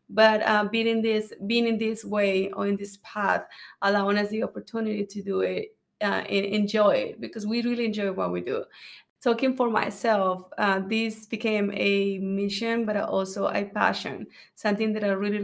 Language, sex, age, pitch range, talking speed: English, female, 20-39, 200-225 Hz, 175 wpm